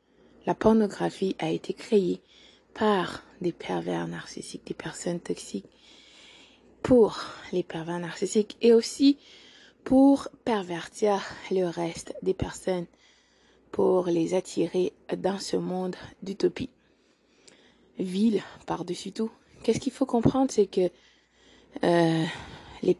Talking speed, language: 110 wpm, French